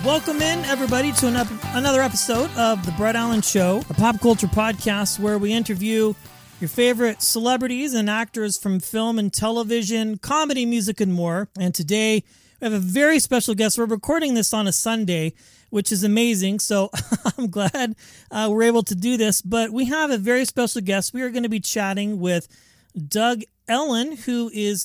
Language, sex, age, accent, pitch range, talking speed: English, male, 30-49, American, 195-235 Hz, 180 wpm